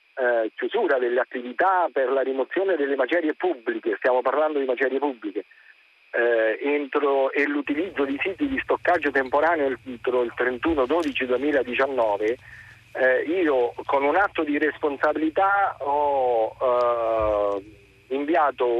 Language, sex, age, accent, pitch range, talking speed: Italian, male, 50-69, native, 135-205 Hz, 120 wpm